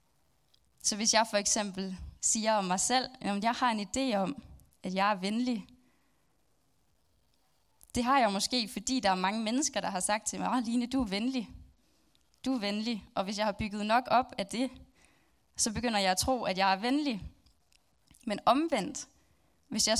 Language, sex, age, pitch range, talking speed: Danish, female, 10-29, 195-240 Hz, 185 wpm